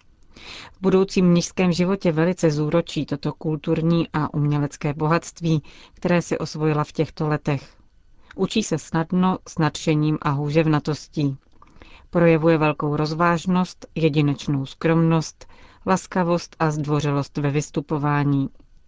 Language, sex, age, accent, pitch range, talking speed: Czech, female, 40-59, native, 150-175 Hz, 110 wpm